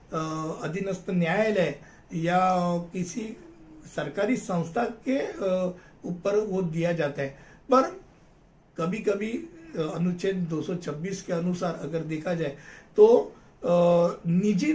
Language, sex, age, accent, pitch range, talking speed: Hindi, male, 50-69, native, 165-215 Hz, 95 wpm